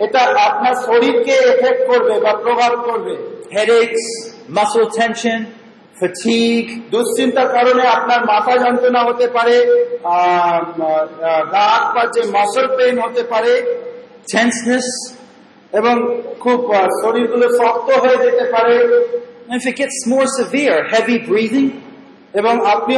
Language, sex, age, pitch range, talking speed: Bengali, male, 40-59, 215-265 Hz, 40 wpm